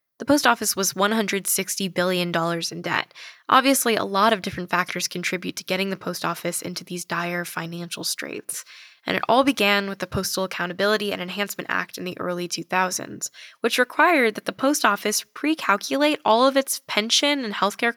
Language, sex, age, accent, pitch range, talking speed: English, female, 10-29, American, 195-255 Hz, 175 wpm